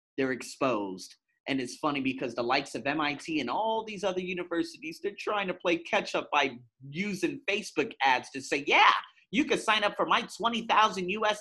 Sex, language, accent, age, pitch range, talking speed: male, English, American, 30-49, 165-235 Hz, 190 wpm